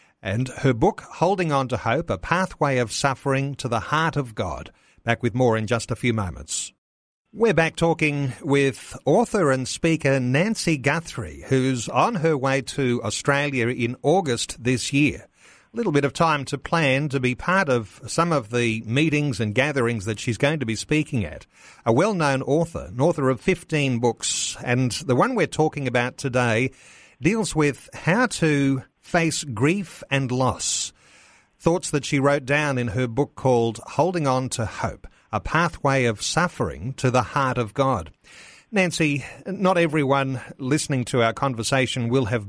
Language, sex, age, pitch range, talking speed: English, male, 50-69, 120-150 Hz, 170 wpm